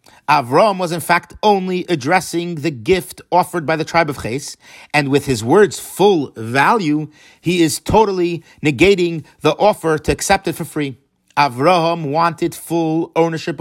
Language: English